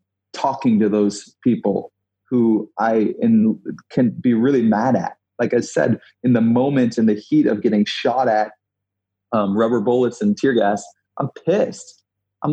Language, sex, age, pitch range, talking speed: English, male, 30-49, 100-125 Hz, 160 wpm